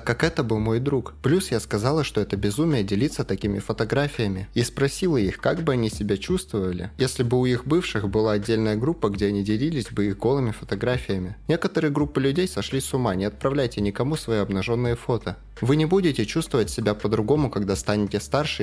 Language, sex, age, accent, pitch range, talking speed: Russian, male, 20-39, native, 105-140 Hz, 190 wpm